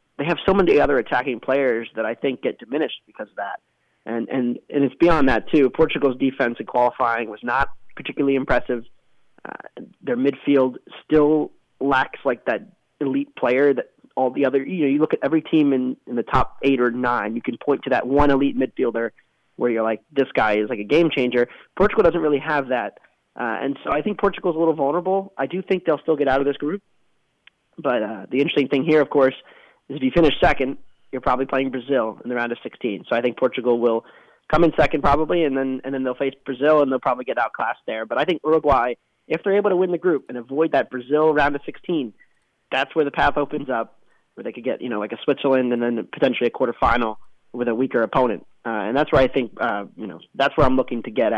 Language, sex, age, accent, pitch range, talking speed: English, male, 20-39, American, 125-150 Hz, 235 wpm